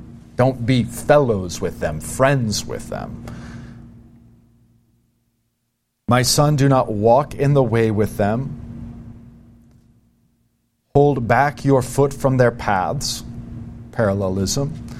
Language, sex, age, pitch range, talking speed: English, male, 40-59, 115-130 Hz, 105 wpm